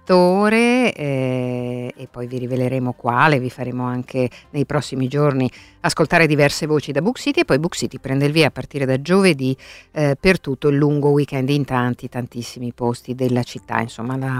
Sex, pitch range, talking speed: female, 125-155 Hz, 175 wpm